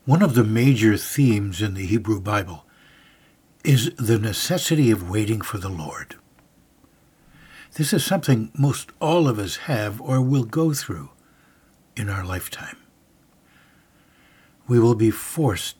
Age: 60-79